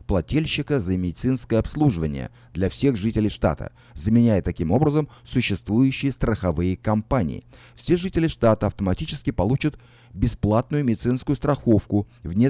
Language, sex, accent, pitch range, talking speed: Russian, male, native, 95-130 Hz, 110 wpm